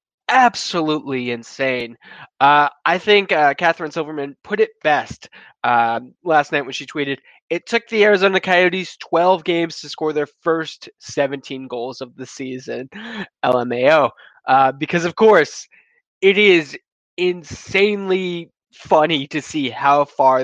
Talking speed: 135 wpm